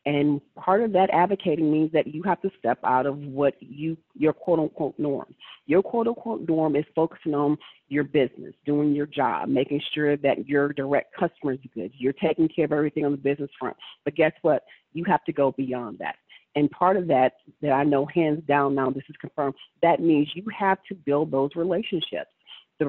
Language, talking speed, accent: English, 205 wpm, American